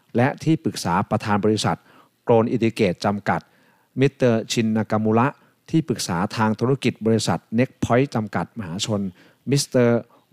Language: Thai